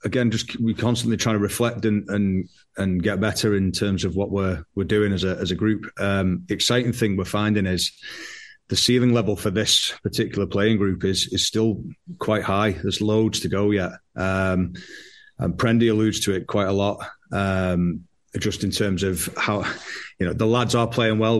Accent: British